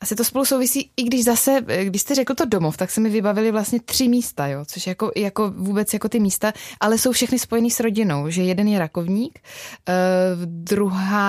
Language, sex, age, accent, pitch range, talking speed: Czech, female, 20-39, native, 175-200 Hz, 205 wpm